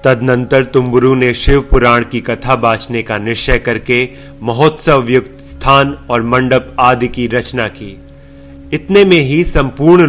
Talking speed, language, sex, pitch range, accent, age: 145 wpm, Hindi, male, 115-130 Hz, native, 30-49